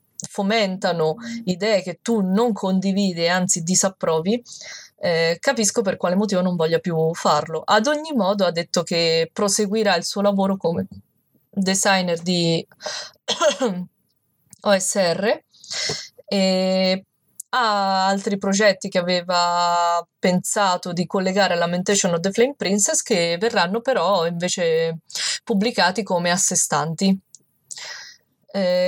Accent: native